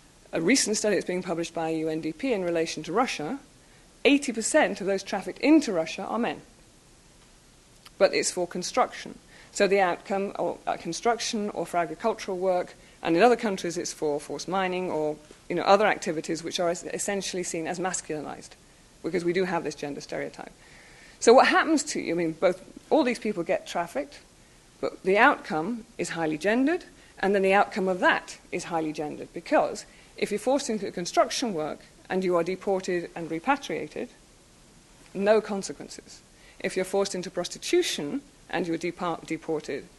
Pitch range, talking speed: 165-215 Hz, 165 wpm